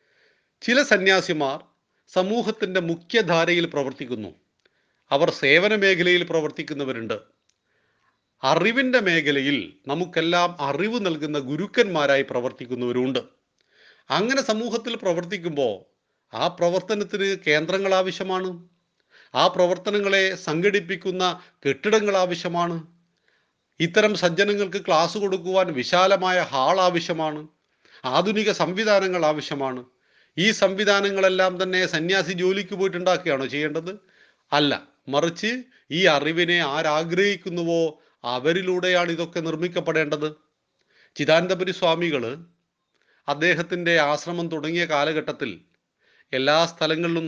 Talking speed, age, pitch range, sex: 75 wpm, 40-59, 150-190 Hz, male